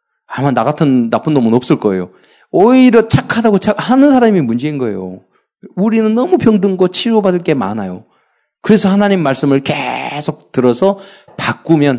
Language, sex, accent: Korean, male, native